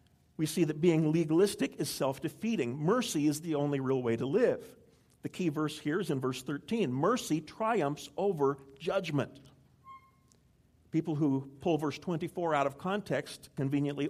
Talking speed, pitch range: 155 wpm, 150-205 Hz